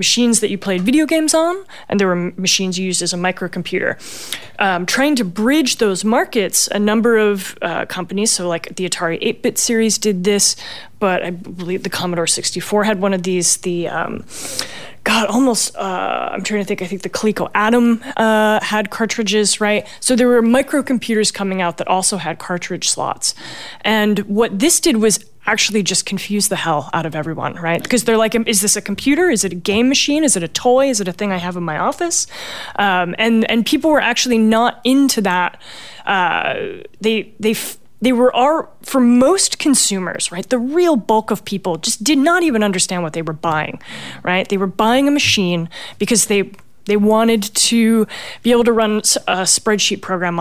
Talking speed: 195 wpm